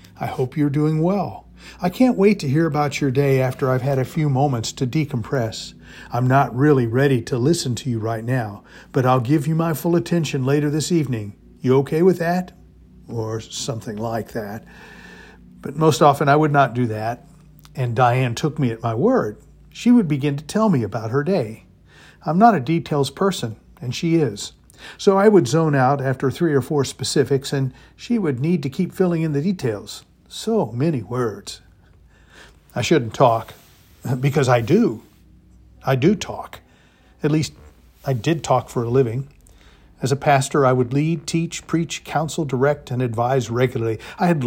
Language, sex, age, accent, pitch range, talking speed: English, male, 50-69, American, 120-160 Hz, 185 wpm